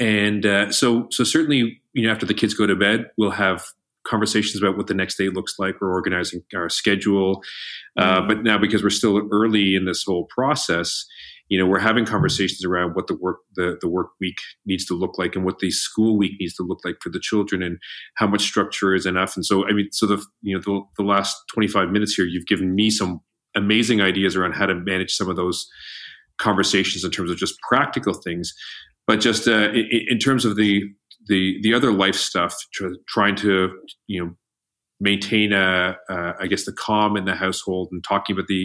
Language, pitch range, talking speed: English, 95-105 Hz, 215 wpm